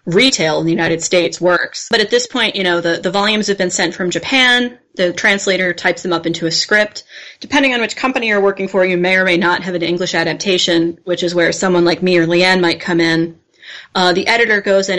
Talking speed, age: 240 wpm, 30-49